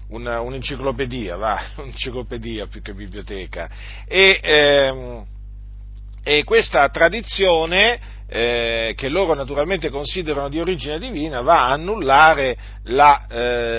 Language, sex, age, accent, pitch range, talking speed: Italian, male, 50-69, native, 115-175 Hz, 95 wpm